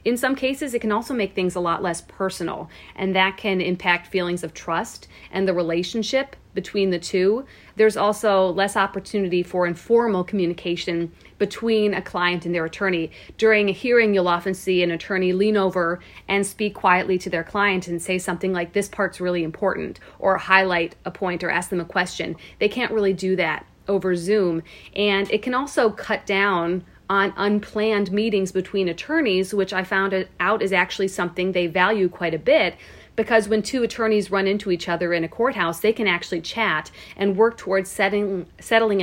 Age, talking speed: 40-59, 185 wpm